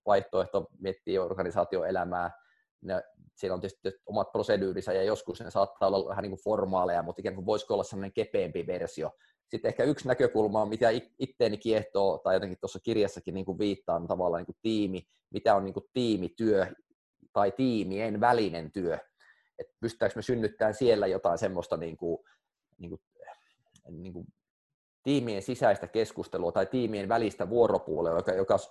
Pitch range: 100-125 Hz